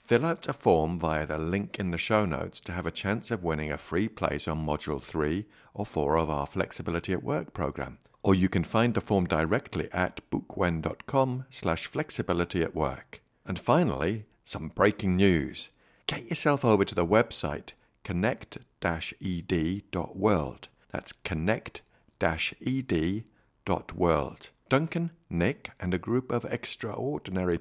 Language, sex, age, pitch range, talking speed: English, male, 50-69, 80-115 Hz, 140 wpm